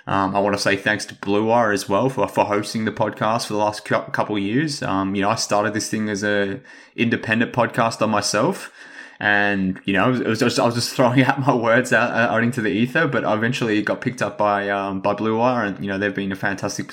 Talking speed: 245 wpm